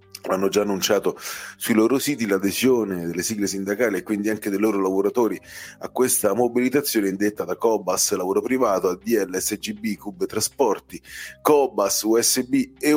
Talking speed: 145 wpm